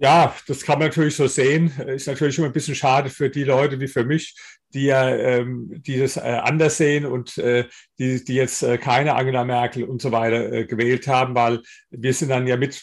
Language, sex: German, male